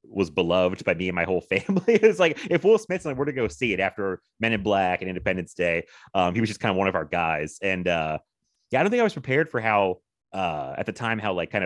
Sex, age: male, 30-49